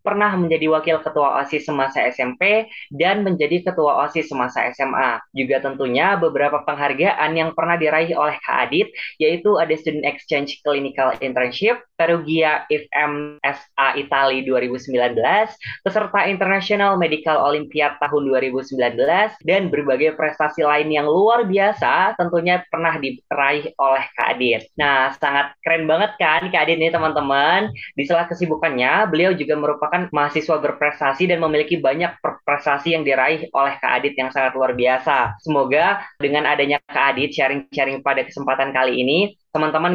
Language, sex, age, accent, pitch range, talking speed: Indonesian, female, 20-39, native, 140-170 Hz, 140 wpm